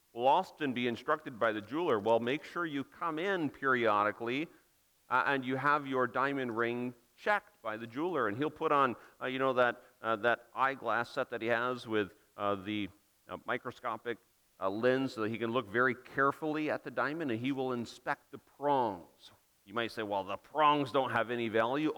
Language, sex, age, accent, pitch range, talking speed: English, male, 40-59, American, 115-155 Hz, 200 wpm